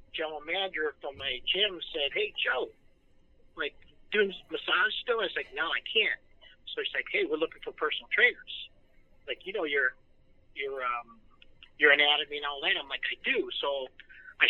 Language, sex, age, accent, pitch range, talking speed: English, male, 50-69, American, 135-190 Hz, 180 wpm